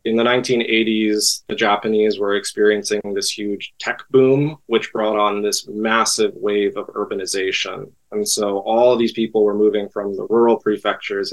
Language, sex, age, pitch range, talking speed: English, male, 20-39, 105-125 Hz, 165 wpm